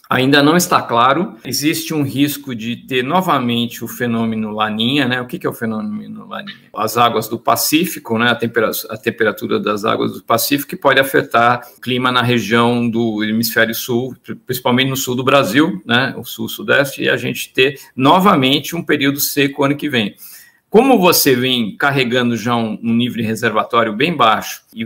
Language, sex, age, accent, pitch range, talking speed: Portuguese, male, 50-69, Brazilian, 120-155 Hz, 175 wpm